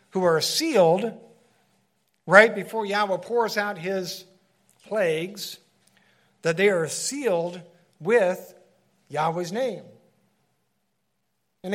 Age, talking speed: 60-79, 90 wpm